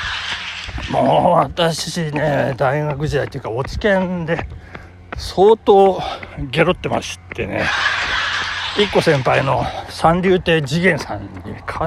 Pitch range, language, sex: 105-175 Hz, Japanese, male